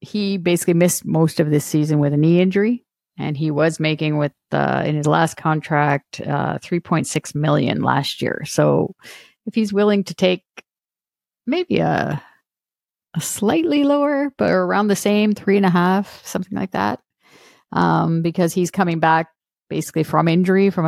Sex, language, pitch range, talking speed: female, English, 145-170 Hz, 165 wpm